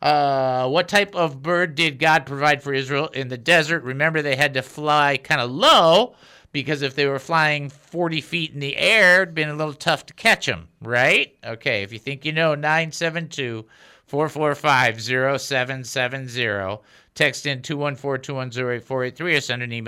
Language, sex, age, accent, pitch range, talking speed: English, male, 50-69, American, 130-170 Hz, 150 wpm